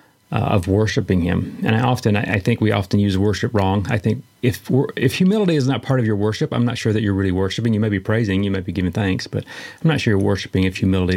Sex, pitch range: male, 100-130 Hz